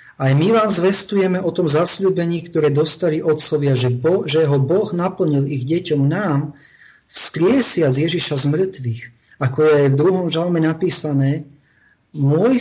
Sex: male